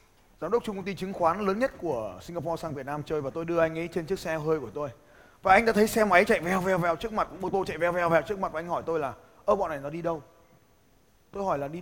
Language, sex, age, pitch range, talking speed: Vietnamese, male, 20-39, 160-215 Hz, 310 wpm